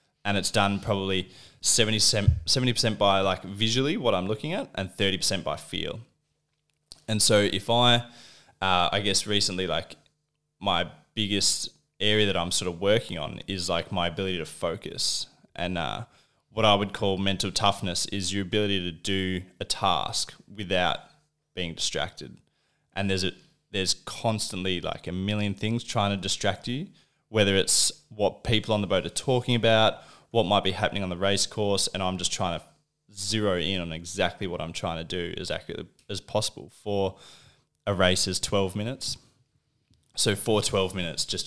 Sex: male